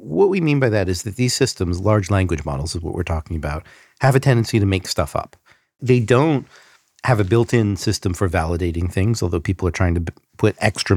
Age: 50-69